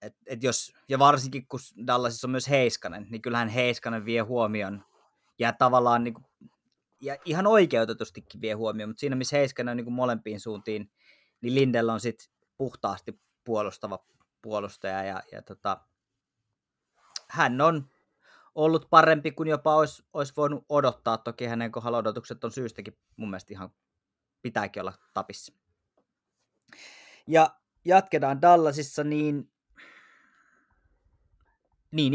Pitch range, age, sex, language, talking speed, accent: 110-135 Hz, 20-39, male, Finnish, 125 wpm, native